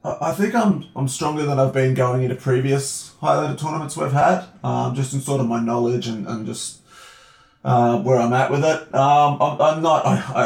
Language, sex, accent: English, male, Australian